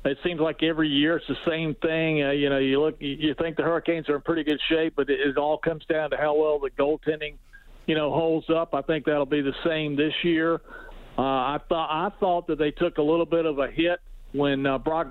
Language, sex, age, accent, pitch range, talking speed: English, male, 50-69, American, 145-165 Hz, 250 wpm